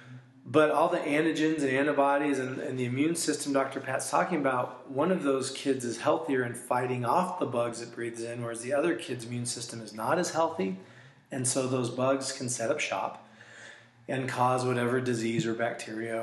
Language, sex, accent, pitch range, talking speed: English, male, American, 120-160 Hz, 195 wpm